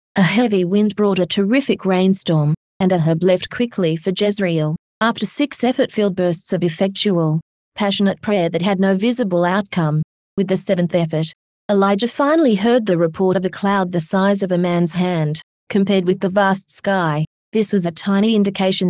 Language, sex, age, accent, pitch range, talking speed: English, female, 20-39, Australian, 175-205 Hz, 170 wpm